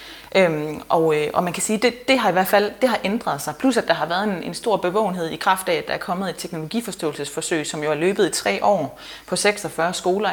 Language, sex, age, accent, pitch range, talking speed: Danish, female, 30-49, native, 170-230 Hz, 260 wpm